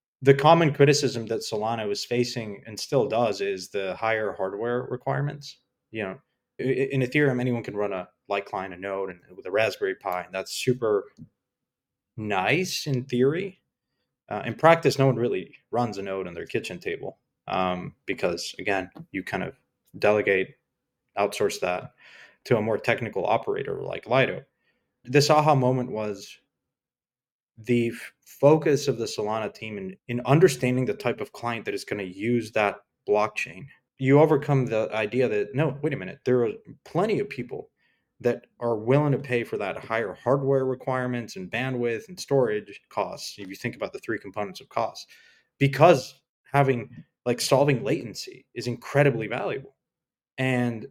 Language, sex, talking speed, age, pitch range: English, male, 165 wpm, 20-39, 115-145 Hz